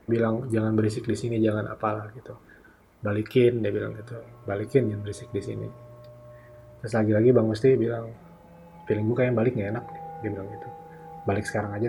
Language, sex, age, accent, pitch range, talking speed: Indonesian, male, 20-39, native, 105-120 Hz, 170 wpm